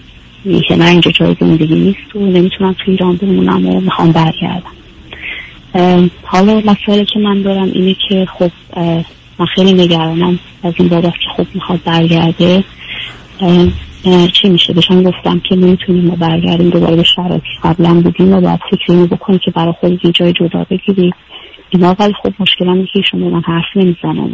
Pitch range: 165-185 Hz